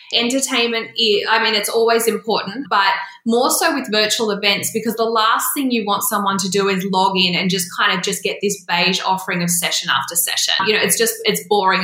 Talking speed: 220 wpm